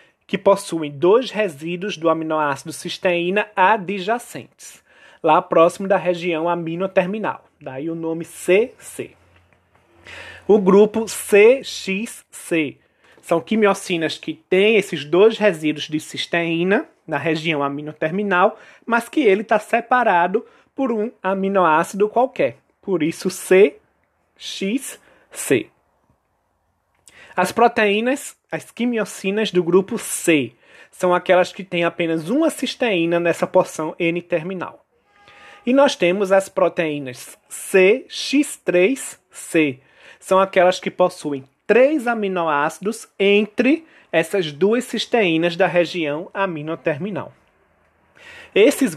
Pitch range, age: 165-215 Hz, 20-39